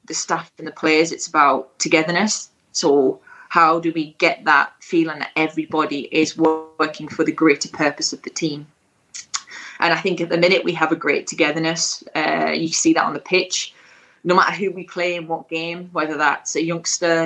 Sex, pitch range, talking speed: female, 155-175 Hz, 195 wpm